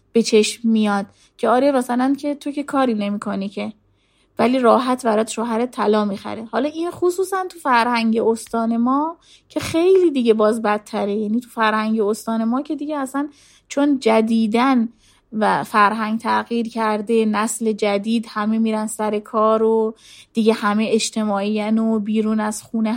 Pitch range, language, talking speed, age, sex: 220-260 Hz, Persian, 150 wpm, 30-49, female